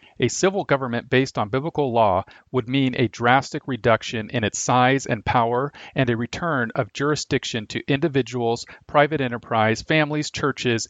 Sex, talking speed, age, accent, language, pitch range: male, 155 wpm, 40-59, American, English, 110-140 Hz